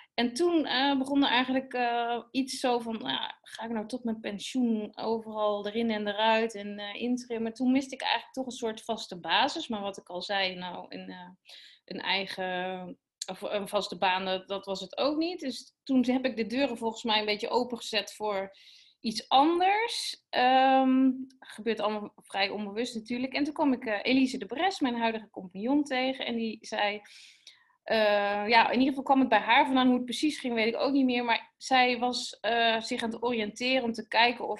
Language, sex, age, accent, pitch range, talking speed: Dutch, female, 20-39, Dutch, 205-260 Hz, 200 wpm